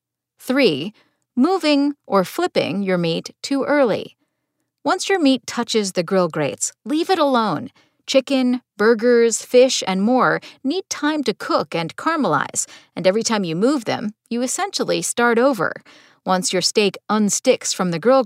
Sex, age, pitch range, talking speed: female, 40-59, 190-280 Hz, 150 wpm